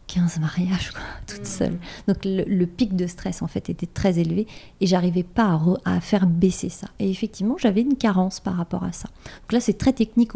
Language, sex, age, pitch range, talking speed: French, female, 30-49, 180-215 Hz, 215 wpm